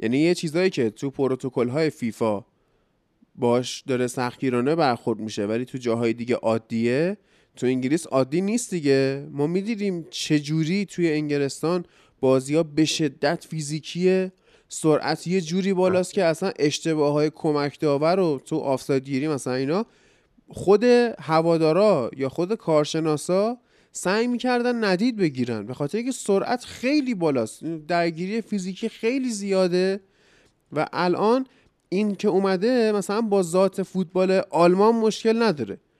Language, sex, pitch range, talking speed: Persian, male, 150-200 Hz, 130 wpm